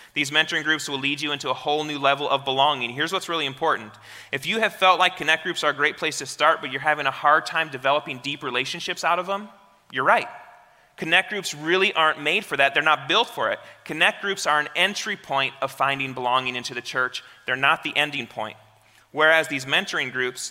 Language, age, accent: English, 30-49, American